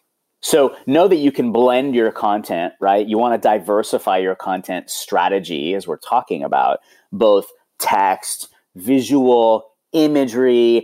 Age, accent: 30-49, American